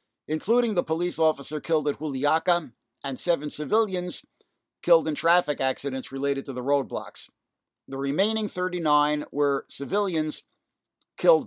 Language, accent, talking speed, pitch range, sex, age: English, American, 125 wpm, 135-175 Hz, male, 50-69